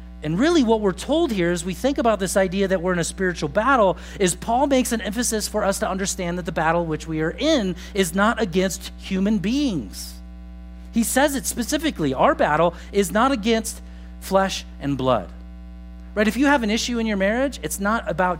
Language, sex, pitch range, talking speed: English, male, 130-210 Hz, 205 wpm